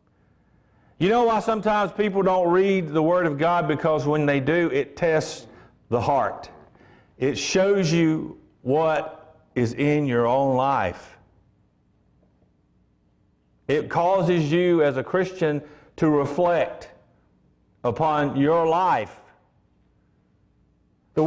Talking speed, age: 115 wpm, 50-69